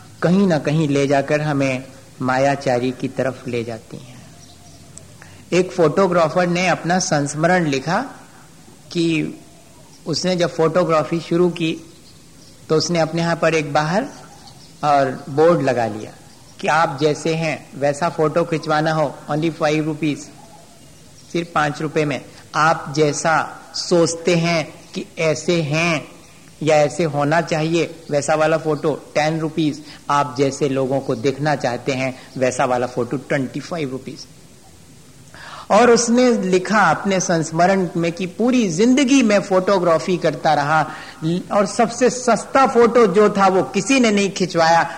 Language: Hindi